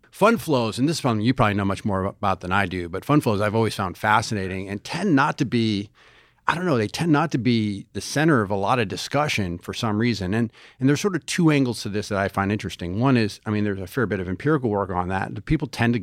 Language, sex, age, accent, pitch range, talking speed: English, male, 40-59, American, 100-135 Hz, 280 wpm